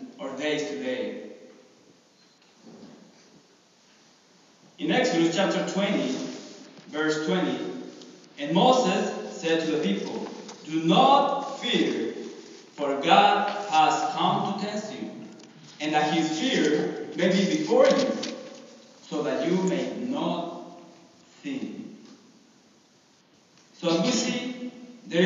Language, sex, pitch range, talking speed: English, male, 155-245 Hz, 100 wpm